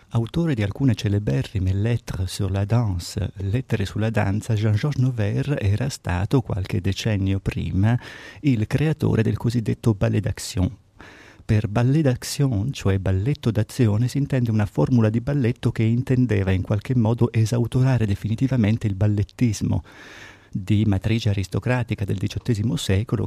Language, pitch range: Italian, 100-120 Hz